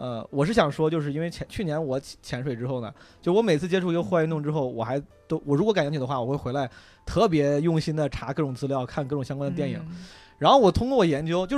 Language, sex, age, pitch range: Chinese, male, 20-39, 130-165 Hz